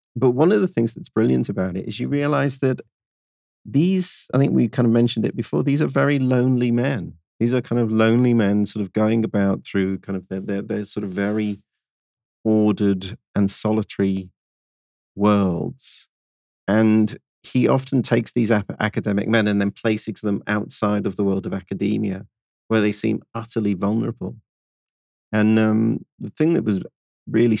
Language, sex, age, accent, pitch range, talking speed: English, male, 40-59, British, 95-115 Hz, 170 wpm